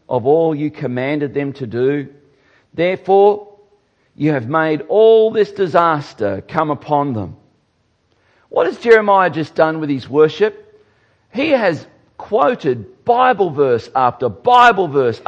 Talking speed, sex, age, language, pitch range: 130 wpm, male, 50-69, English, 140-210 Hz